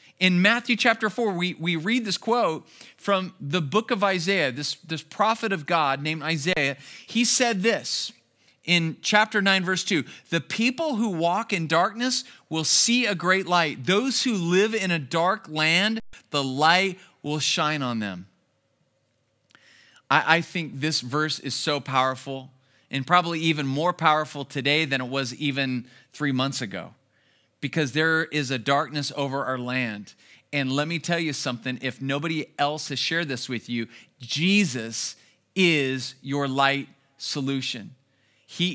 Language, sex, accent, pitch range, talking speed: English, male, American, 135-175 Hz, 160 wpm